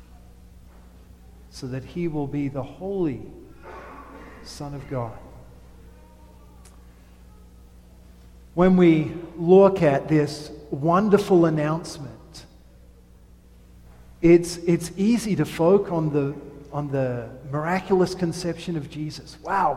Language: English